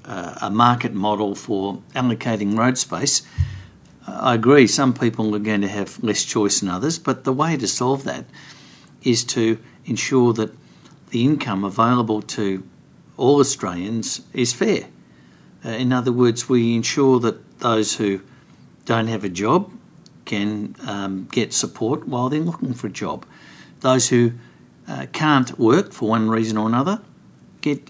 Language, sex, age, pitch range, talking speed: English, male, 60-79, 100-125 Hz, 155 wpm